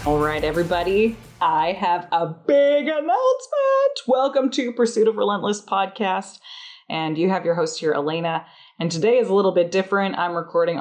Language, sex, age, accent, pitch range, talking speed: English, female, 20-39, American, 150-220 Hz, 160 wpm